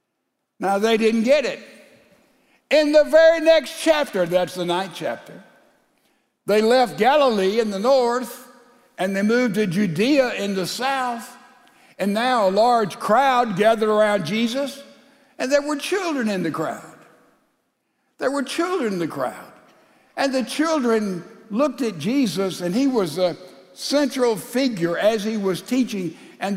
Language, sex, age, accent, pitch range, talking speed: English, male, 60-79, American, 180-255 Hz, 150 wpm